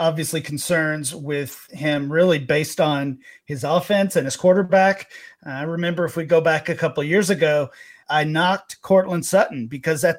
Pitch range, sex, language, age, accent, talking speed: 145-180 Hz, male, English, 40-59, American, 175 wpm